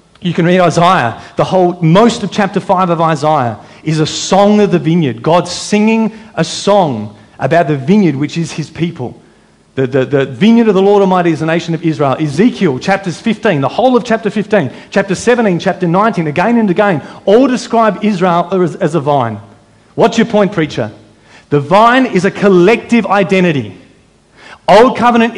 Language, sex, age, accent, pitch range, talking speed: English, male, 40-59, Australian, 145-200 Hz, 180 wpm